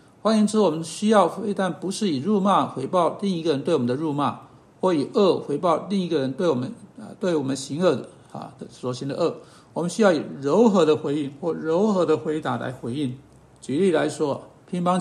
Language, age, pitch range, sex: Chinese, 60-79, 145-200 Hz, male